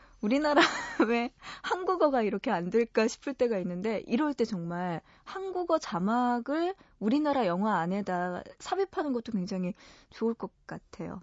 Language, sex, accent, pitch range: Korean, female, native, 190-270 Hz